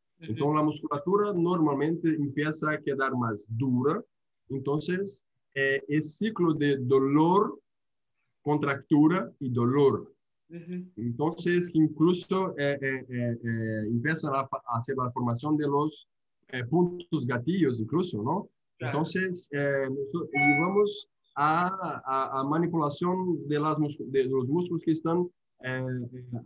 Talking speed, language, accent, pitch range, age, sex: 120 wpm, Spanish, Brazilian, 125-165 Hz, 20-39, male